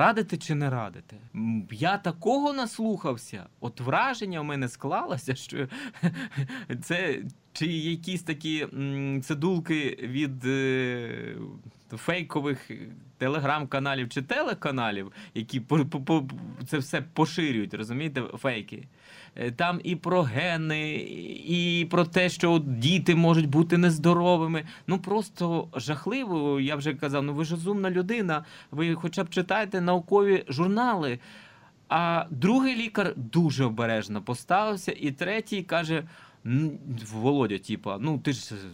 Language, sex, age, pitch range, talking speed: Ukrainian, male, 20-39, 130-175 Hz, 110 wpm